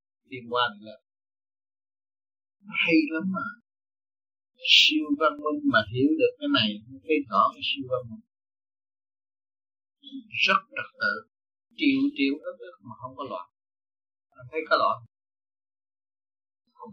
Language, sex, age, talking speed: Vietnamese, male, 60-79, 120 wpm